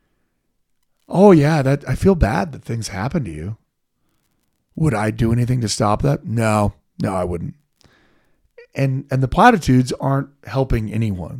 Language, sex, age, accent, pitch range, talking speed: English, male, 40-59, American, 100-140 Hz, 155 wpm